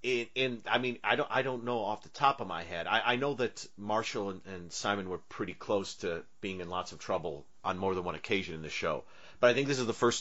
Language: English